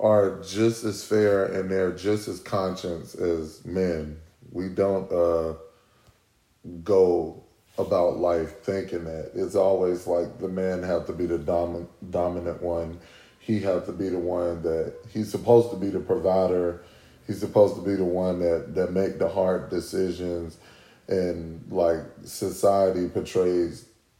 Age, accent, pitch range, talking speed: 30-49, American, 85-105 Hz, 145 wpm